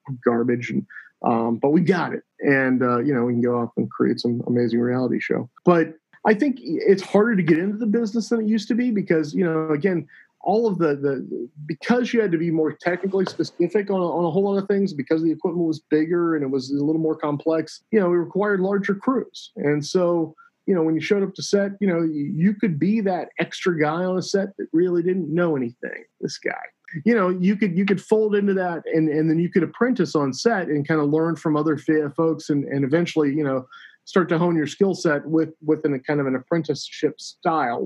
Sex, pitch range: male, 145-185 Hz